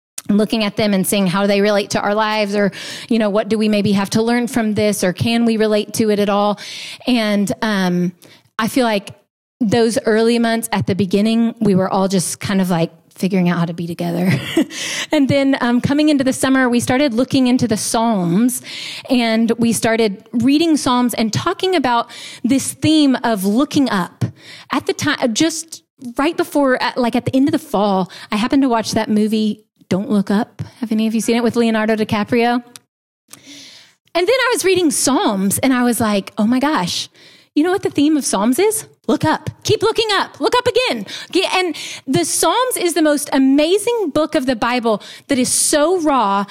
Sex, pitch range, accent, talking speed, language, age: female, 215-290 Hz, American, 200 wpm, English, 30-49